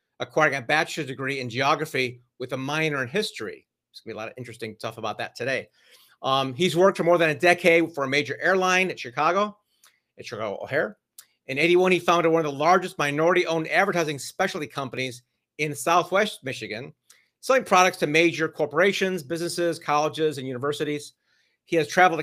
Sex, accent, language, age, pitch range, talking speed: male, American, English, 40-59, 140-185 Hz, 180 wpm